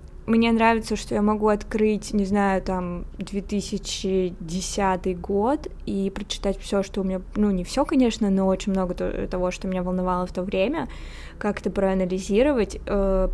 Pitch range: 190-215 Hz